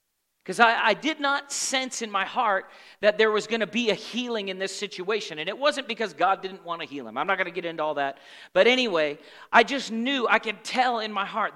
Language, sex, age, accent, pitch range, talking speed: English, male, 40-59, American, 170-240 Hz, 255 wpm